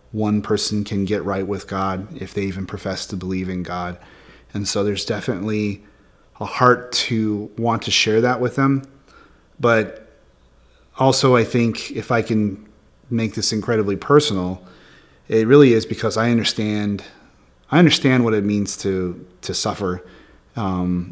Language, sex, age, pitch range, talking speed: English, male, 30-49, 95-110 Hz, 155 wpm